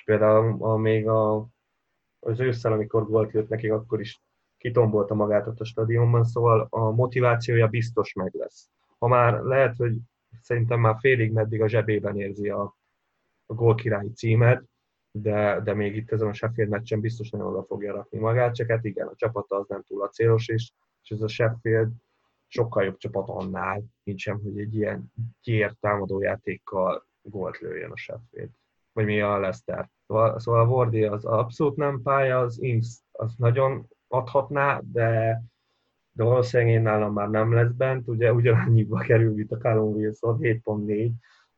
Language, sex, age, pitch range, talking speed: Hungarian, male, 20-39, 105-115 Hz, 160 wpm